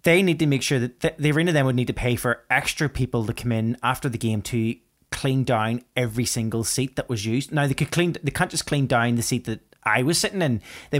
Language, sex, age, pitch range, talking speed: English, male, 20-39, 120-140 Hz, 250 wpm